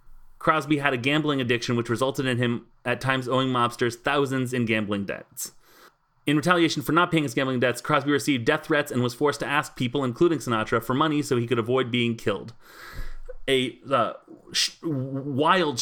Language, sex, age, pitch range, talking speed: English, male, 30-49, 115-150 Hz, 180 wpm